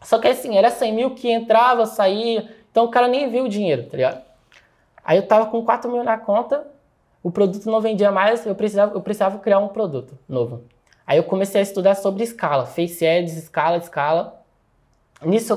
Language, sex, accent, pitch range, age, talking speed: Portuguese, male, Brazilian, 165-220 Hz, 20-39, 195 wpm